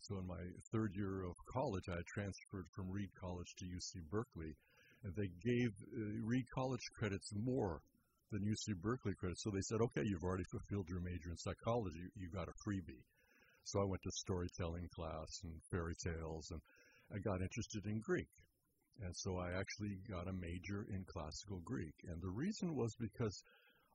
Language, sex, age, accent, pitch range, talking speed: English, male, 60-79, American, 90-110 Hz, 180 wpm